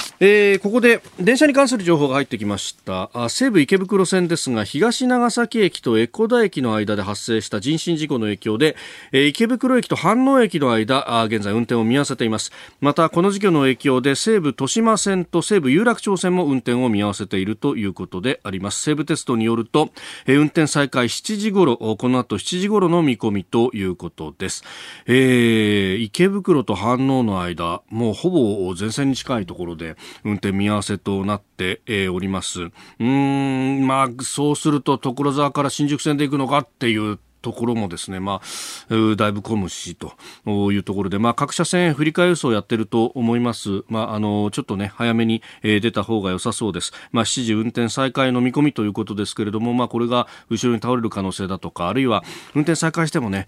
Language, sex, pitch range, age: Japanese, male, 105-150 Hz, 40-59